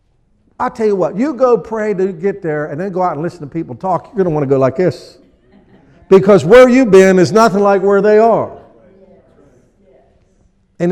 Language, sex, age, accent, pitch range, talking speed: English, male, 50-69, American, 130-175 Hz, 210 wpm